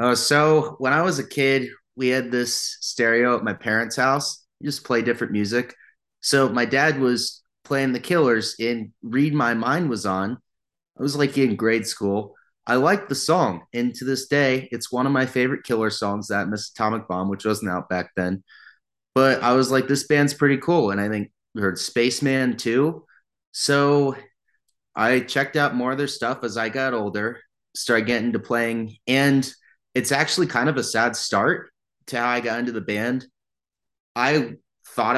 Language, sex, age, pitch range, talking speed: English, male, 30-49, 110-135 Hz, 190 wpm